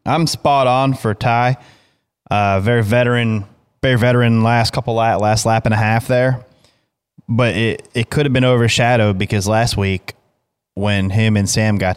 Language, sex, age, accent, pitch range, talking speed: English, male, 20-39, American, 100-125 Hz, 170 wpm